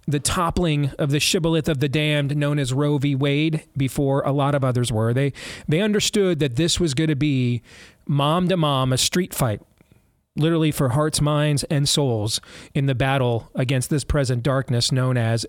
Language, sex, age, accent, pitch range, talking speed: English, male, 40-59, American, 125-150 Hz, 190 wpm